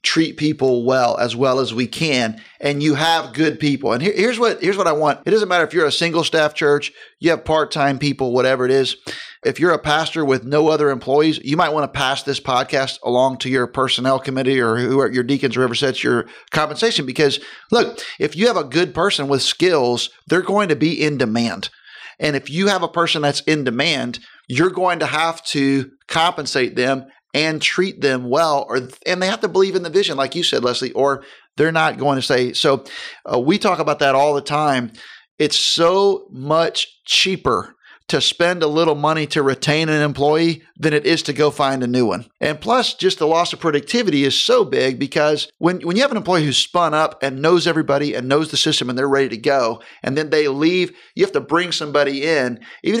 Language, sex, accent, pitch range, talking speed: English, male, American, 135-170 Hz, 220 wpm